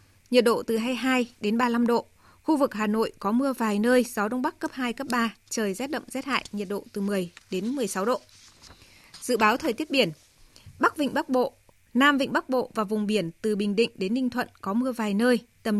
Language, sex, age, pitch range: Vietnamese, female, 20-39, 205-255 Hz